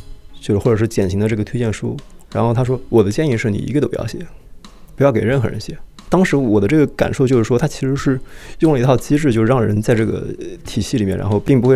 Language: Chinese